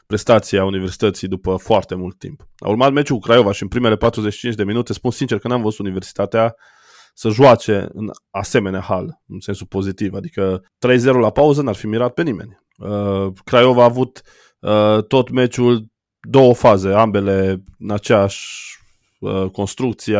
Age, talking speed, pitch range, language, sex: 20-39, 150 wpm, 105-125 Hz, Romanian, male